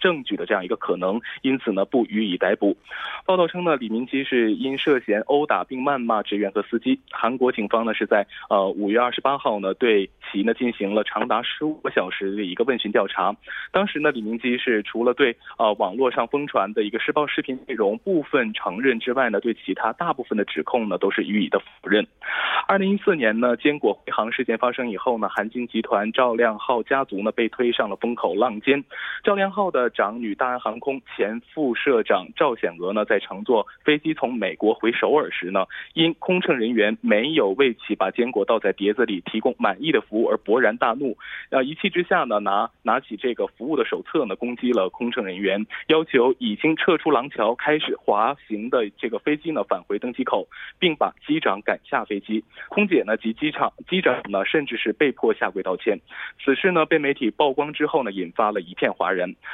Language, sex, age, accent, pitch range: Korean, male, 20-39, Chinese, 115-150 Hz